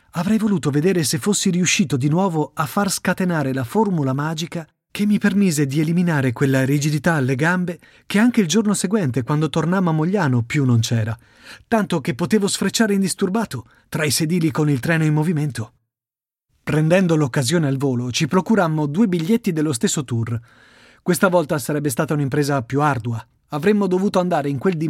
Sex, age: male, 30-49